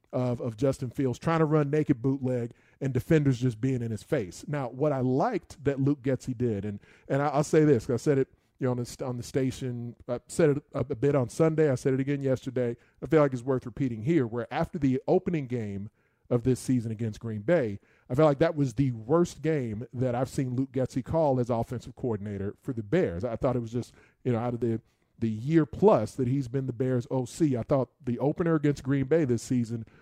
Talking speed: 240 wpm